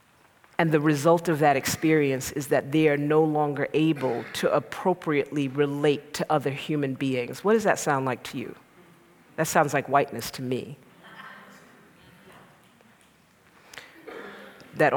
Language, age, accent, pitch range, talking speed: English, 40-59, American, 140-165 Hz, 135 wpm